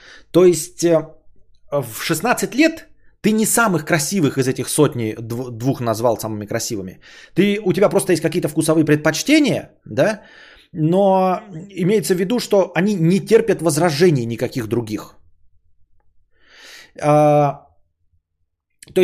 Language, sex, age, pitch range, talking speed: Bulgarian, male, 20-39, 125-195 Hz, 120 wpm